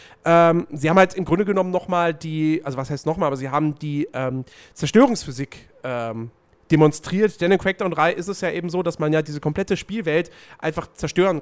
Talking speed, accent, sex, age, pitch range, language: 195 wpm, German, male, 40-59, 140-205 Hz, German